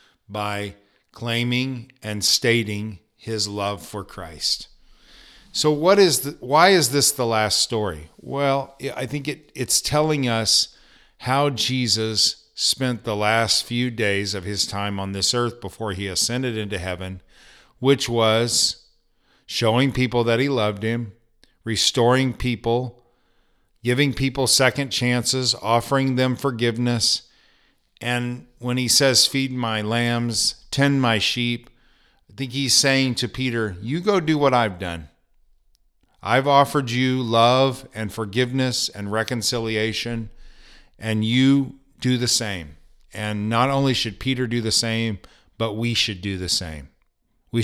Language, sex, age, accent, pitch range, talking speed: English, male, 50-69, American, 105-130 Hz, 140 wpm